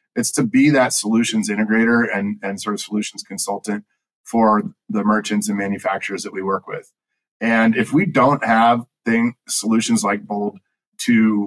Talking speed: 160 wpm